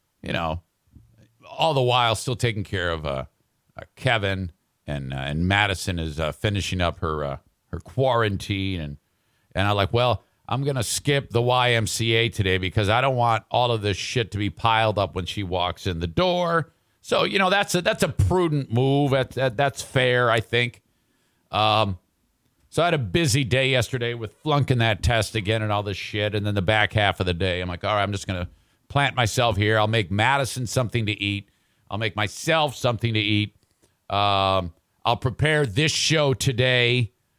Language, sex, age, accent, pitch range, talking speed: English, male, 50-69, American, 100-130 Hz, 195 wpm